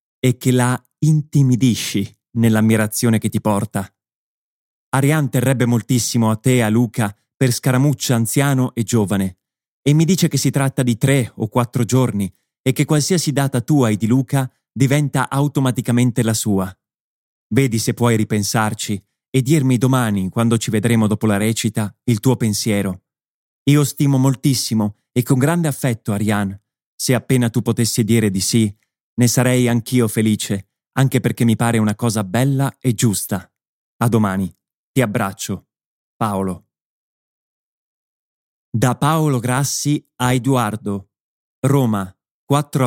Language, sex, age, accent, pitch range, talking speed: Italian, male, 30-49, native, 110-135 Hz, 140 wpm